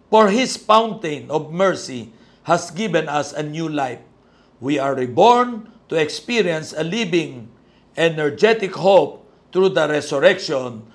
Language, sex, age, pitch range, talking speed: Filipino, male, 50-69, 150-205 Hz, 125 wpm